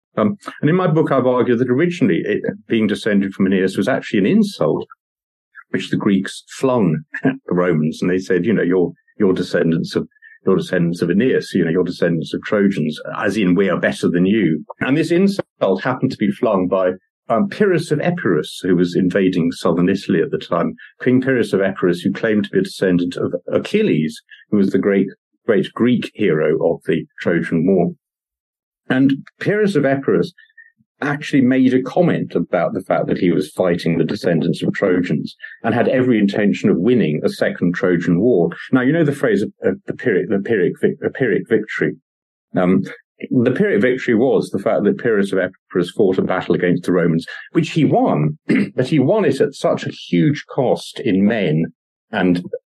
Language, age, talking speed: English, 50-69, 190 wpm